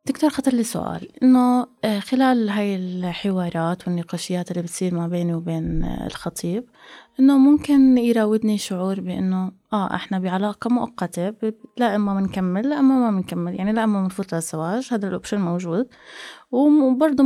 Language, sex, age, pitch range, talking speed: Arabic, female, 20-39, 185-235 Hz, 135 wpm